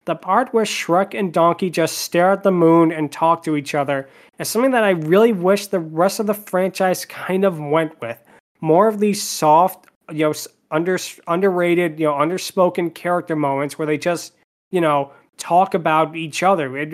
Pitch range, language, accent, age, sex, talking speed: 155-185 Hz, English, American, 20-39, male, 190 wpm